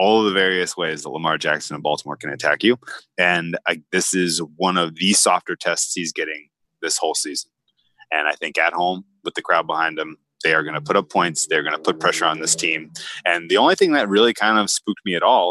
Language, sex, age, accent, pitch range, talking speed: English, male, 20-39, American, 85-110 Hz, 250 wpm